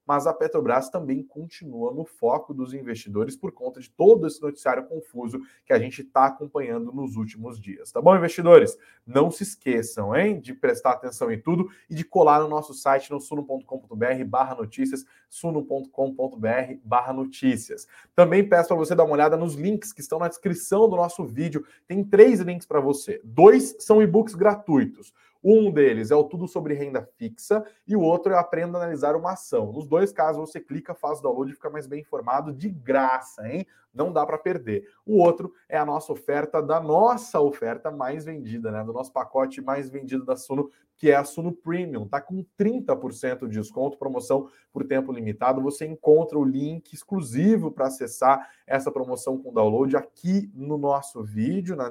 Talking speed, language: 185 wpm, Portuguese